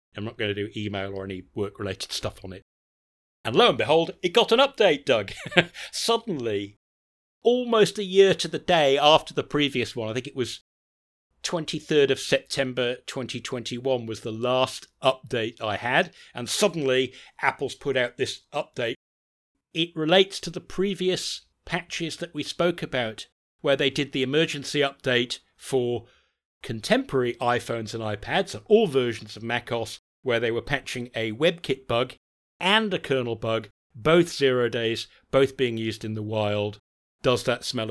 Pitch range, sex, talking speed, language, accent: 110-140 Hz, male, 165 wpm, English, British